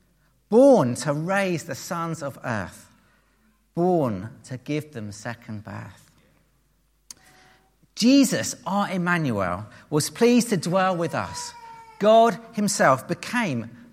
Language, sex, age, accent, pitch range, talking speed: English, male, 40-59, British, 140-210 Hz, 110 wpm